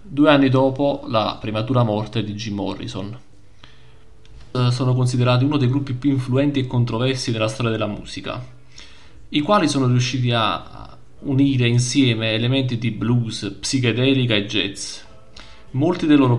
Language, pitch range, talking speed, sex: Italian, 110-130 Hz, 140 wpm, male